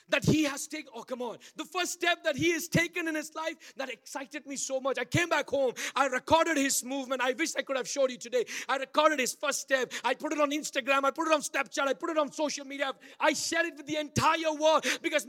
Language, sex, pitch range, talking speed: English, male, 250-325 Hz, 265 wpm